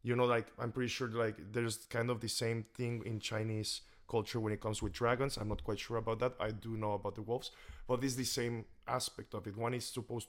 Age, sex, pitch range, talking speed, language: 20-39, male, 105-120 Hz, 250 wpm, English